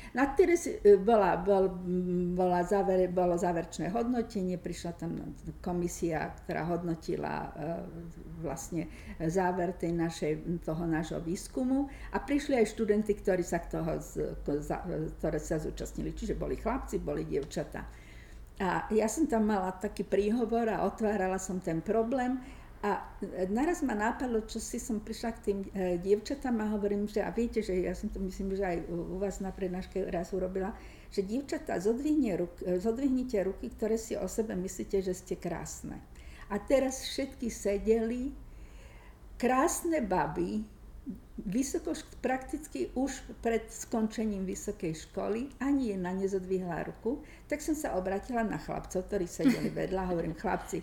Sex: female